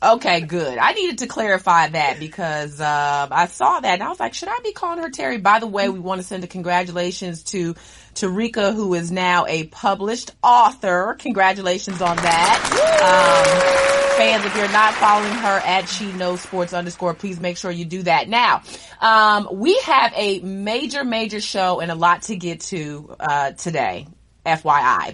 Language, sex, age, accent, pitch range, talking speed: English, female, 30-49, American, 170-225 Hz, 185 wpm